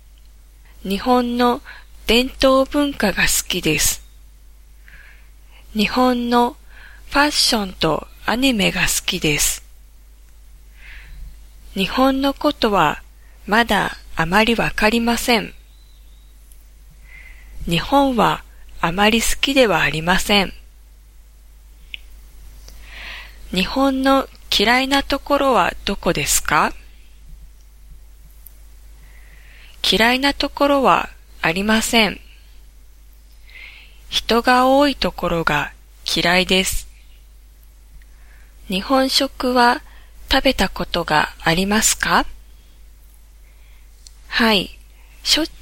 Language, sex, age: Japanese, female, 20-39